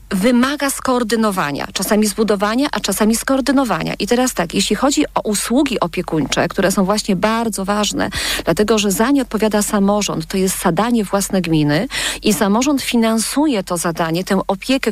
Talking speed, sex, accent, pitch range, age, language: 155 wpm, female, native, 190-245 Hz, 40-59, Polish